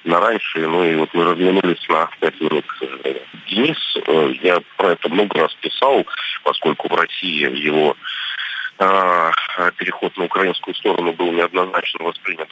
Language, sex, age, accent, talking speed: Russian, male, 30-49, native, 135 wpm